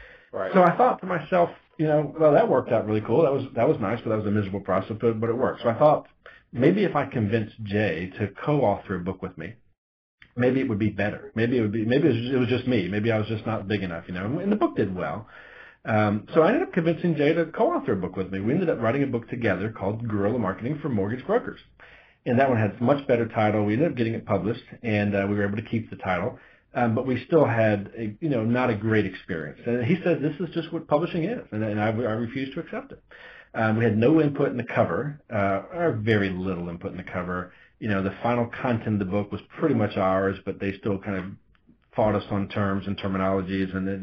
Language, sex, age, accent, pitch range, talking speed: English, male, 40-59, American, 100-130 Hz, 260 wpm